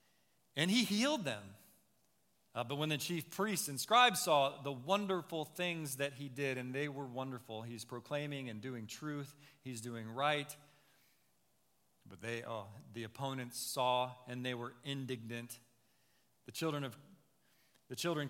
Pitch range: 120-155 Hz